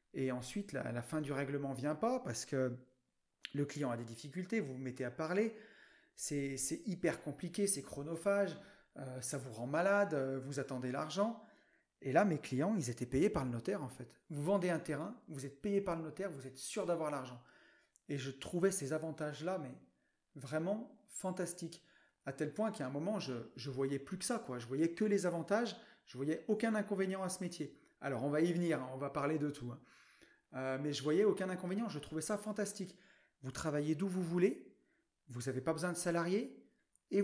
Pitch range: 140-190 Hz